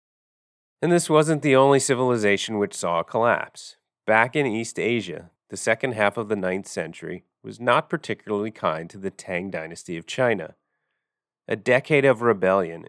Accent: American